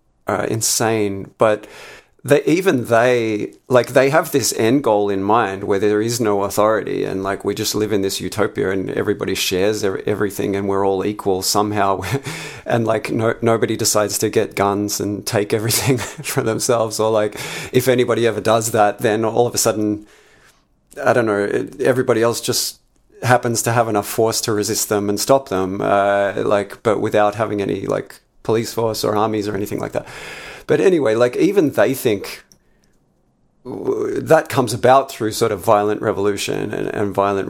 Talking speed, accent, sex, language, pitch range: 175 wpm, Australian, male, English, 100-115 Hz